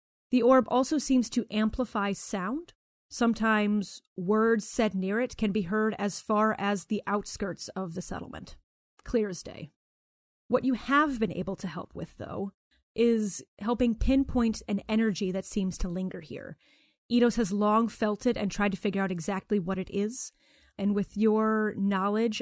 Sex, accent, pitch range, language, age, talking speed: female, American, 200-245 Hz, English, 30-49, 170 wpm